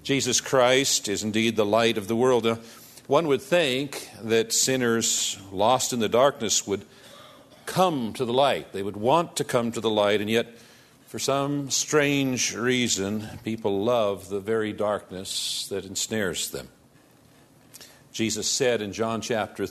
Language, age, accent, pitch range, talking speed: English, 50-69, American, 105-130 Hz, 150 wpm